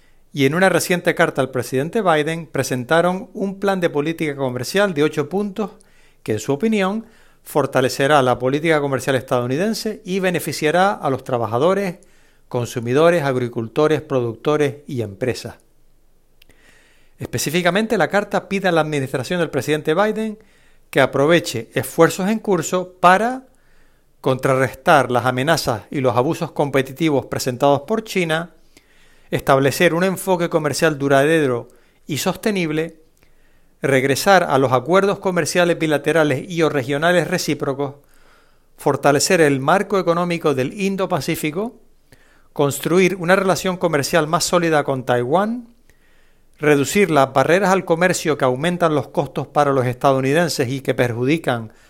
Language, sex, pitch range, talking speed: Spanish, male, 135-185 Hz, 125 wpm